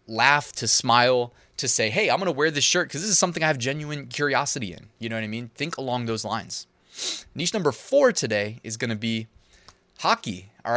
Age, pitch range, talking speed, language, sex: 20-39, 125-170 Hz, 210 wpm, English, male